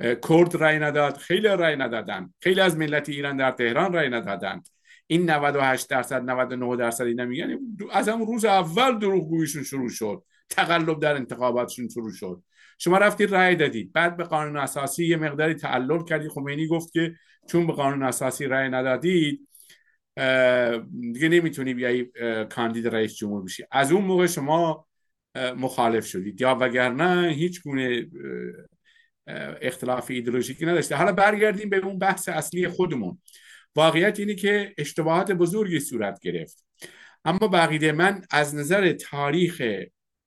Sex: male